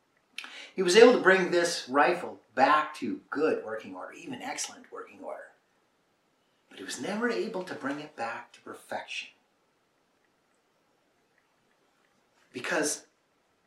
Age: 50-69